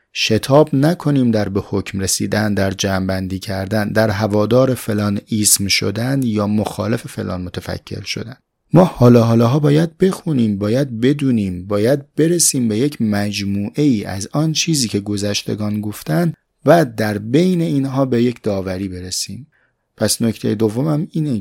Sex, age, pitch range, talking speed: male, 30-49, 100-140 Hz, 140 wpm